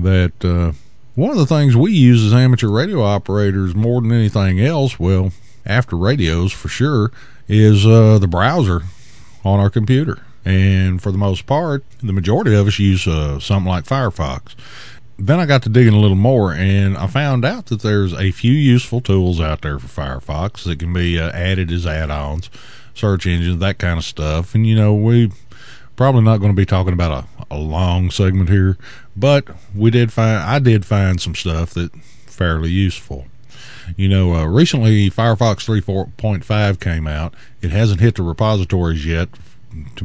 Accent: American